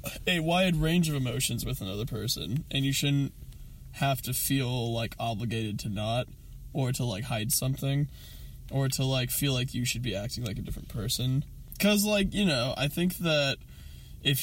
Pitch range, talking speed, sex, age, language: 115-140 Hz, 185 wpm, male, 20-39, English